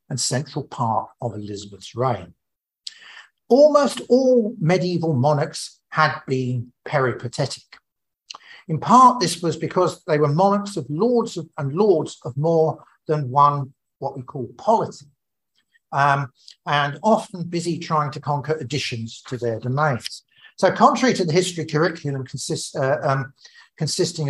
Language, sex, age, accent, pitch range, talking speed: English, male, 50-69, British, 130-180 Hz, 135 wpm